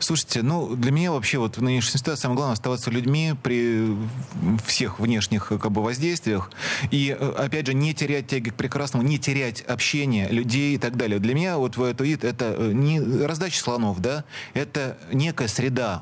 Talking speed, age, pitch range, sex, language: 180 wpm, 30-49, 115-140 Hz, male, Russian